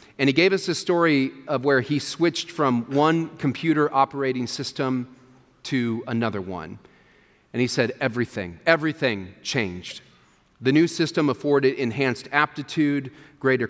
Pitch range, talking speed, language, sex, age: 115-145 Hz, 135 wpm, English, male, 40-59